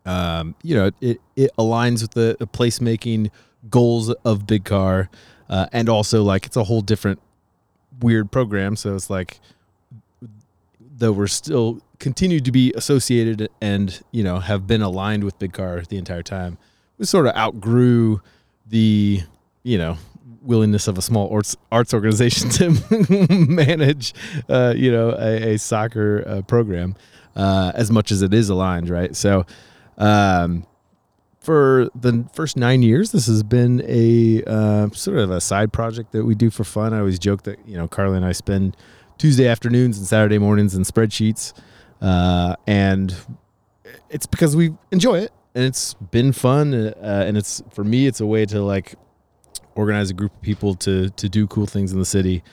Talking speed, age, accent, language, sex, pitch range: 175 wpm, 30-49, American, English, male, 100-120 Hz